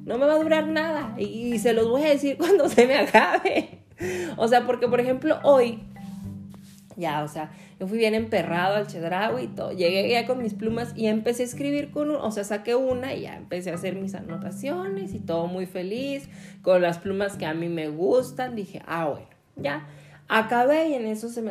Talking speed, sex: 215 wpm, female